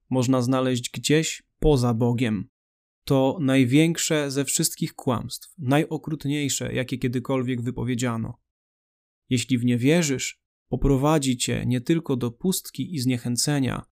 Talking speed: 110 wpm